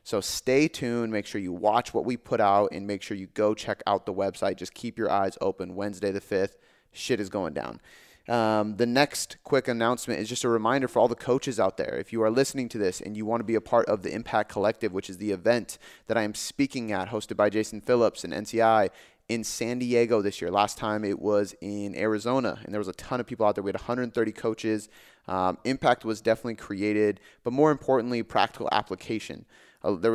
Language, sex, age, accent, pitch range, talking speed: English, male, 30-49, American, 105-125 Hz, 225 wpm